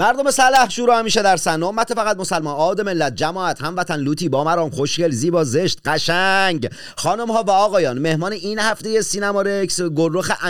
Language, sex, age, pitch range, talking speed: Persian, male, 40-59, 165-215 Hz, 160 wpm